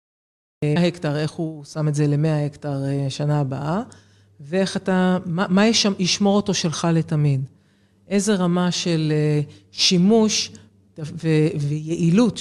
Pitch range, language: 150-175 Hz, Hebrew